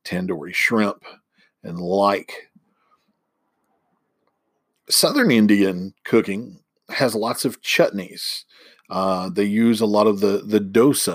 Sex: male